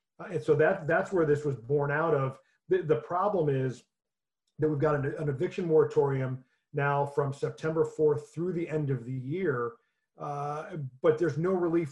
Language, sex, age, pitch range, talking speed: English, male, 40-59, 140-155 Hz, 185 wpm